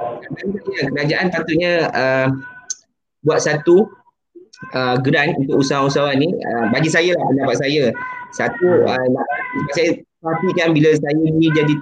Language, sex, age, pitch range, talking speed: Malay, male, 20-39, 140-185 Hz, 130 wpm